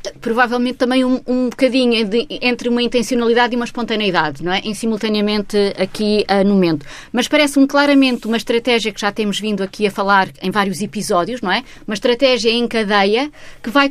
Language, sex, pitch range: Portuguese, female, 210-265 Hz